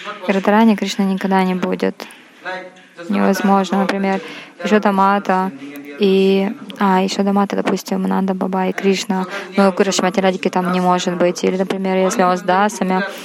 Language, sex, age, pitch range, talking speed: Russian, female, 20-39, 190-210 Hz, 130 wpm